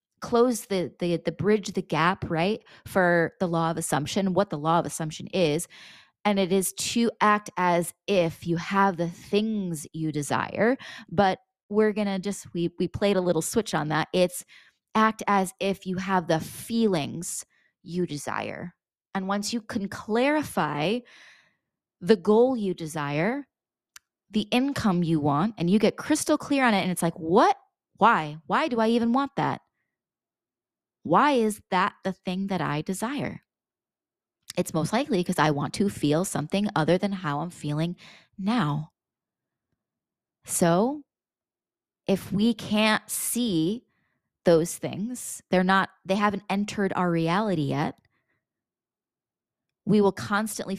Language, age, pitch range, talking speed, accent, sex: English, 20-39, 170-215 Hz, 150 wpm, American, female